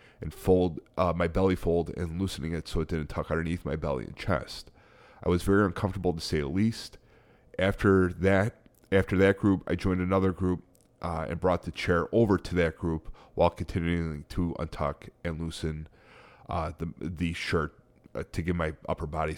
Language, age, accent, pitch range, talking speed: English, 30-49, American, 85-110 Hz, 185 wpm